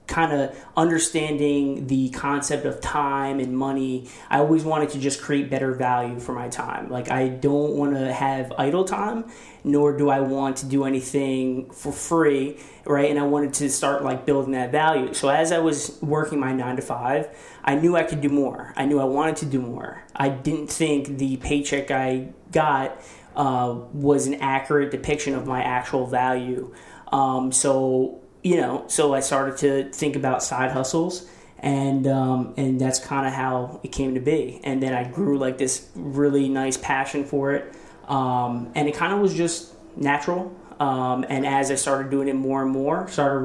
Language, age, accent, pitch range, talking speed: English, 20-39, American, 130-145 Hz, 190 wpm